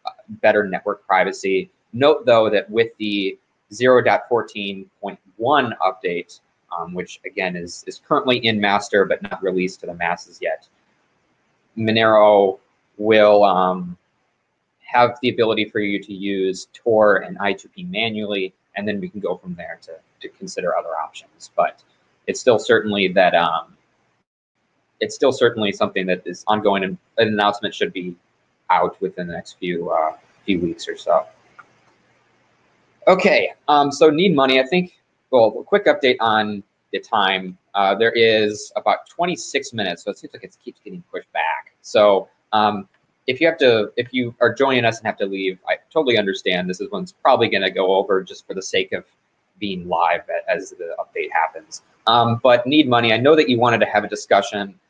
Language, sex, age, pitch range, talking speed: English, male, 20-39, 100-150 Hz, 170 wpm